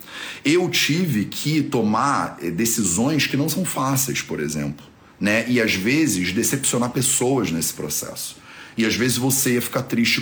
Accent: Brazilian